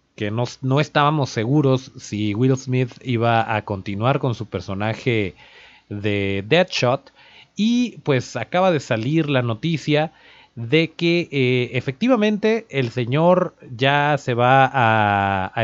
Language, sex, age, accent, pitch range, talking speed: Spanish, male, 30-49, Mexican, 110-150 Hz, 130 wpm